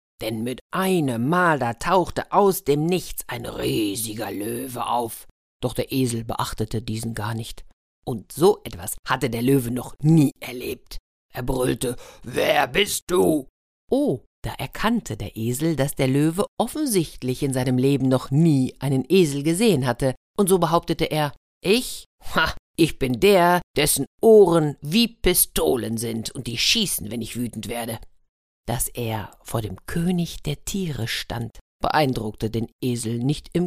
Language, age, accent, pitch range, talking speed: German, 50-69, German, 120-170 Hz, 155 wpm